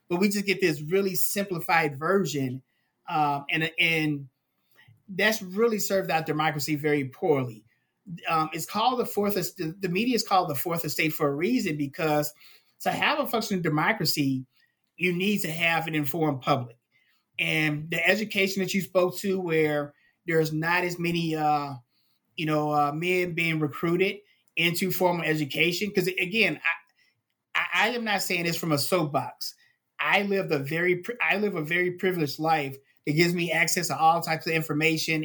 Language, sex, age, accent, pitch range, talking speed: English, male, 30-49, American, 150-185 Hz, 165 wpm